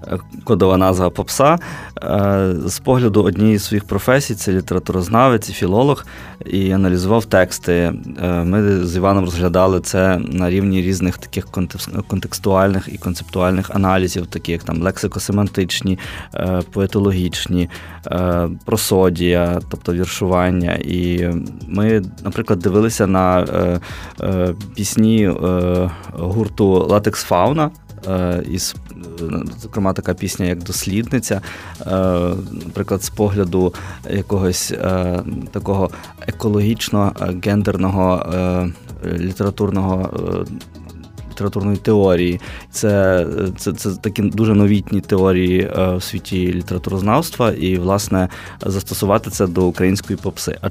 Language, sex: Ukrainian, male